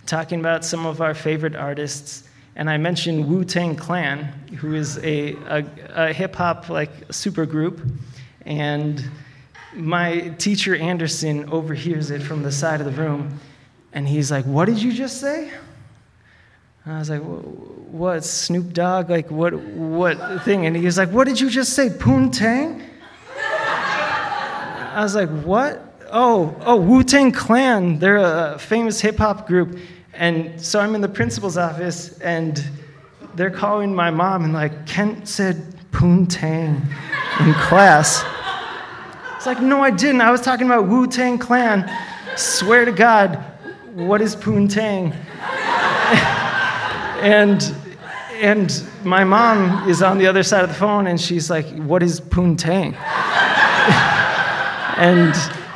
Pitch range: 155-205 Hz